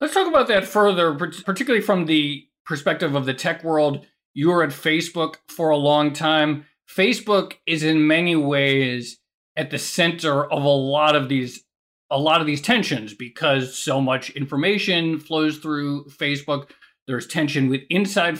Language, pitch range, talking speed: English, 135-160 Hz, 165 wpm